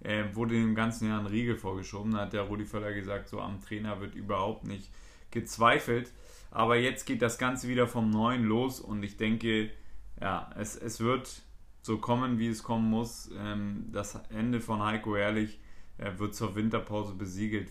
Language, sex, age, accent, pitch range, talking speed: German, male, 30-49, German, 100-115 Hz, 175 wpm